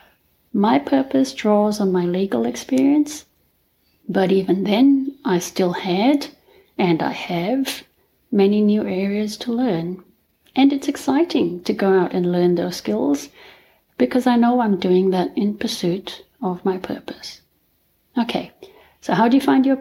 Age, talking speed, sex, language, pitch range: 60-79, 150 wpm, female, English, 190-270 Hz